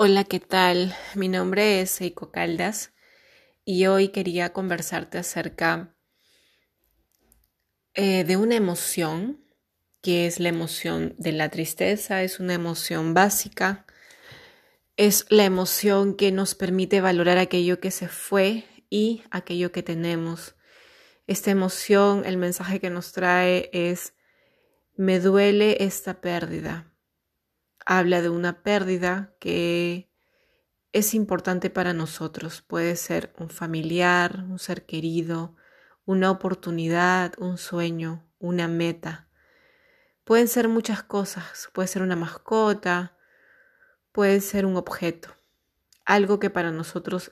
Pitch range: 175-200 Hz